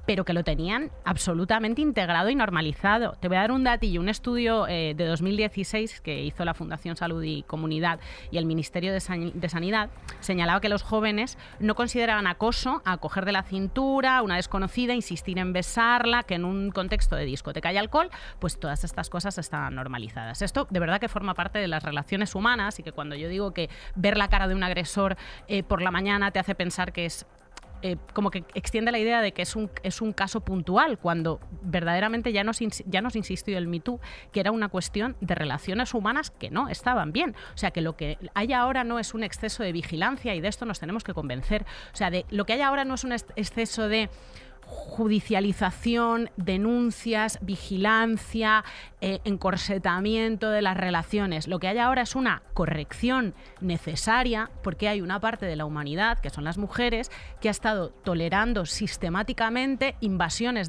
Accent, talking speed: Spanish, 195 wpm